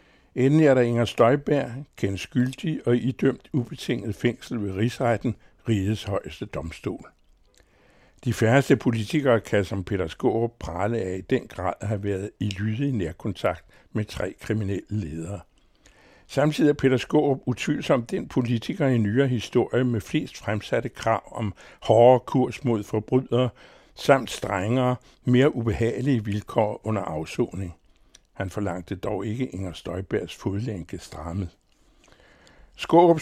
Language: Danish